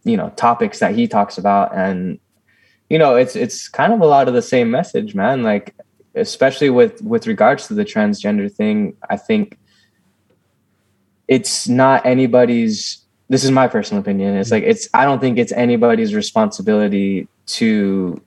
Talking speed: 165 wpm